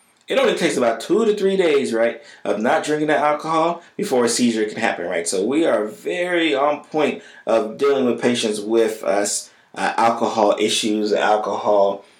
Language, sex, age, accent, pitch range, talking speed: English, male, 20-39, American, 105-140 Hz, 175 wpm